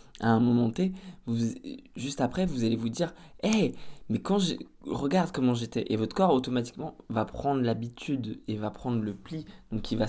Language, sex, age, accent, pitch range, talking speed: French, male, 20-39, French, 110-130 Hz, 195 wpm